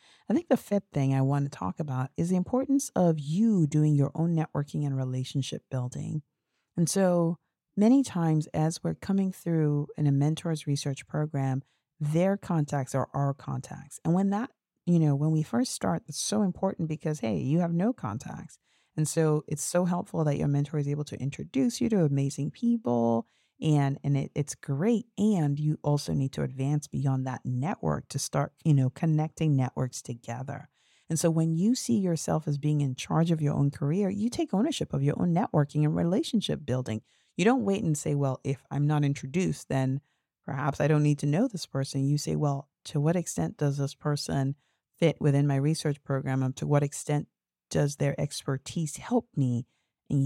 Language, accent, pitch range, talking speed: English, American, 140-170 Hz, 195 wpm